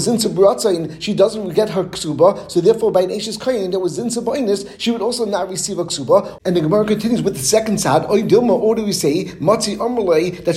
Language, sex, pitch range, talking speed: English, male, 180-220 Hz, 200 wpm